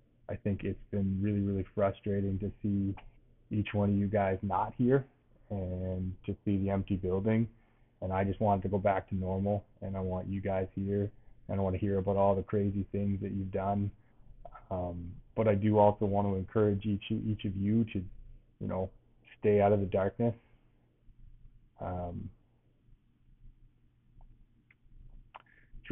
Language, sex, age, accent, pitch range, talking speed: English, male, 20-39, American, 95-110 Hz, 165 wpm